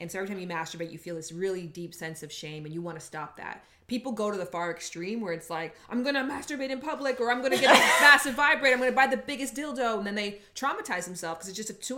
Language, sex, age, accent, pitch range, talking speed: English, female, 20-39, American, 165-210 Hz, 295 wpm